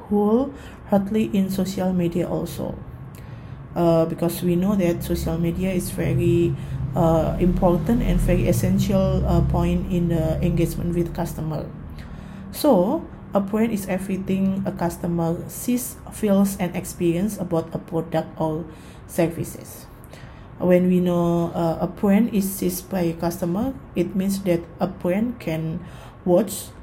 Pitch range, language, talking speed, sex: 165-190 Hz, Indonesian, 135 wpm, female